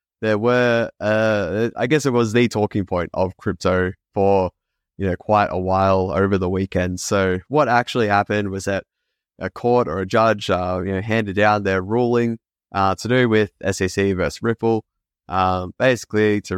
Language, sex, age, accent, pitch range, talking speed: English, male, 20-39, Australian, 95-115 Hz, 175 wpm